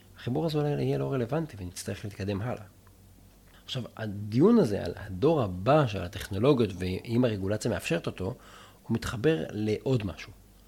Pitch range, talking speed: 95-140 Hz, 140 wpm